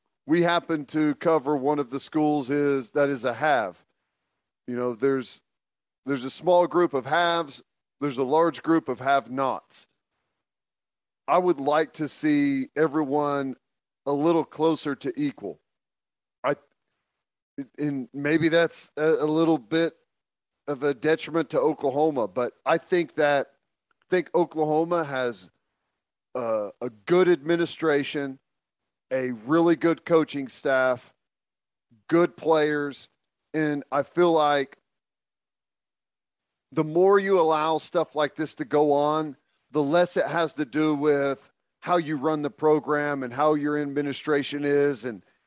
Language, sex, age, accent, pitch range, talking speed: English, male, 40-59, American, 140-165 Hz, 135 wpm